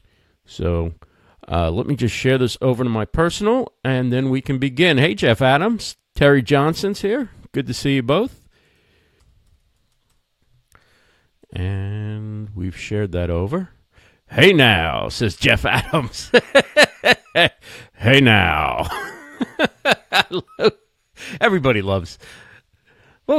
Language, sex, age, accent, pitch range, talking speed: English, male, 50-69, American, 105-165 Hz, 110 wpm